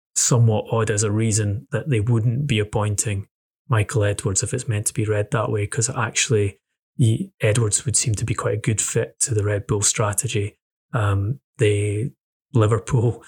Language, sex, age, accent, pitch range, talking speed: English, male, 20-39, British, 110-125 Hz, 175 wpm